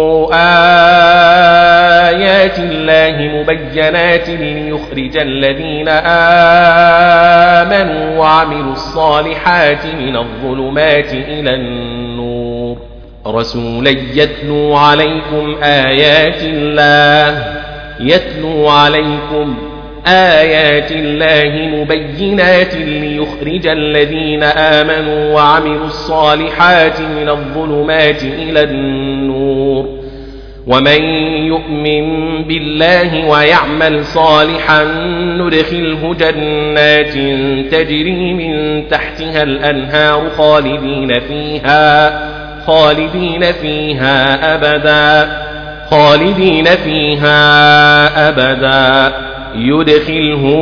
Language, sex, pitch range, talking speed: Arabic, male, 145-160 Hz, 65 wpm